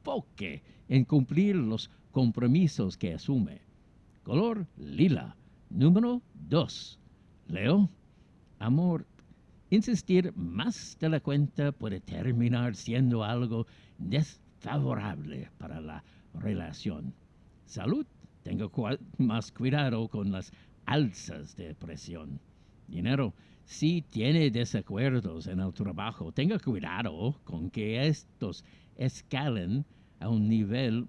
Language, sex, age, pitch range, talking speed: Spanish, male, 60-79, 105-145 Hz, 100 wpm